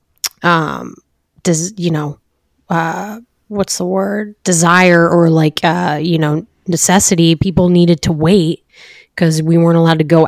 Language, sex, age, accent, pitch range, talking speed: English, female, 20-39, American, 155-180 Hz, 145 wpm